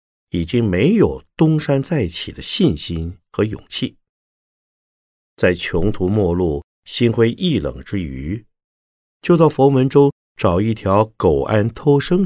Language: Chinese